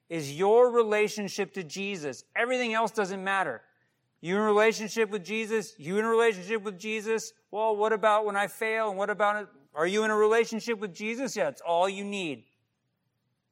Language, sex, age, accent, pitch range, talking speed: English, male, 50-69, American, 195-260 Hz, 190 wpm